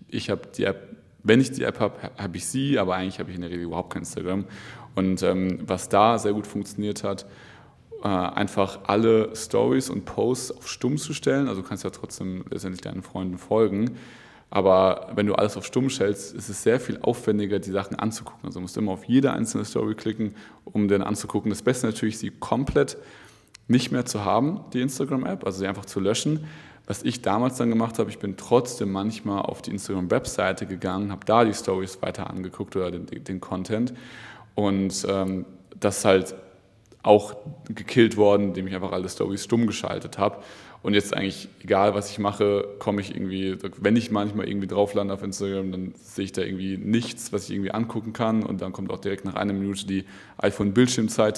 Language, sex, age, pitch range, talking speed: German, male, 20-39, 95-110 Hz, 200 wpm